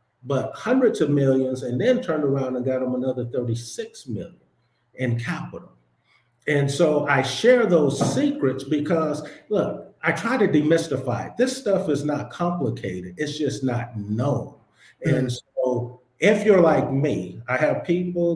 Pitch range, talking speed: 115-145 Hz, 155 wpm